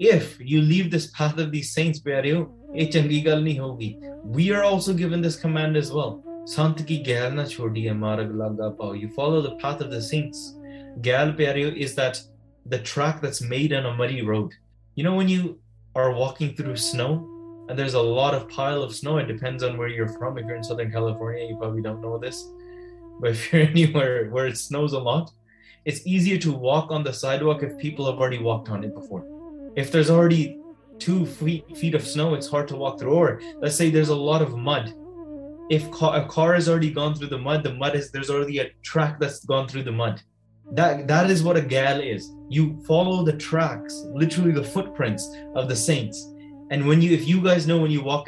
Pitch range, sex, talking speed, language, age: 120-160 Hz, male, 200 wpm, English, 20-39